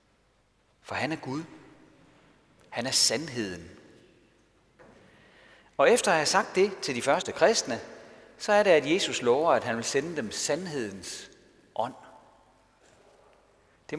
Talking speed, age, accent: 135 wpm, 40-59, native